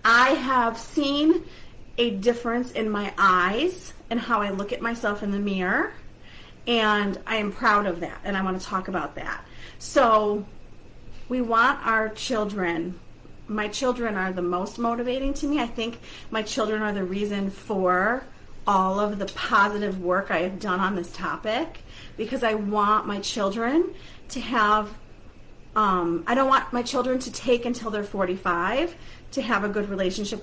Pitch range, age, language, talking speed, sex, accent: 200-235 Hz, 40-59, English, 170 wpm, female, American